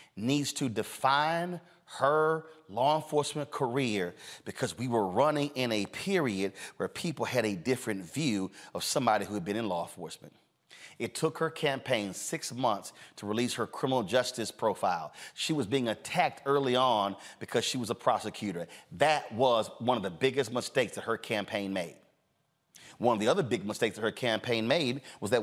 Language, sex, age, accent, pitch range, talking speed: English, male, 30-49, American, 125-160 Hz, 175 wpm